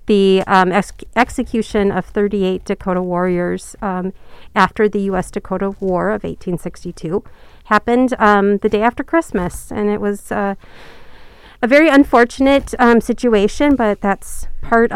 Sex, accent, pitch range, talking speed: female, American, 195-235 Hz, 130 wpm